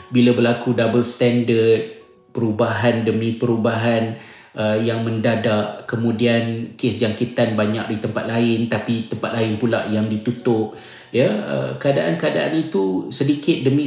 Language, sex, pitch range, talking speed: Malay, male, 115-130 Hz, 125 wpm